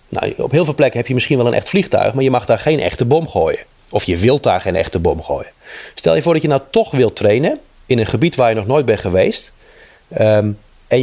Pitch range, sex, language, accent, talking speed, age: 110-135 Hz, male, Dutch, Dutch, 250 wpm, 30-49